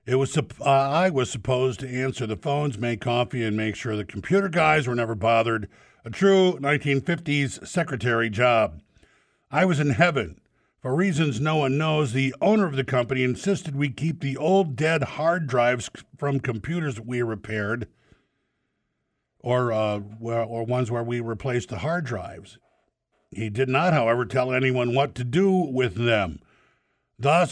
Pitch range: 125-155 Hz